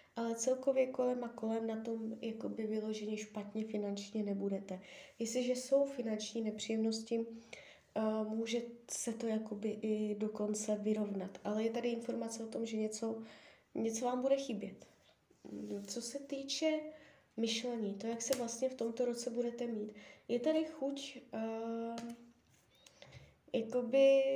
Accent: native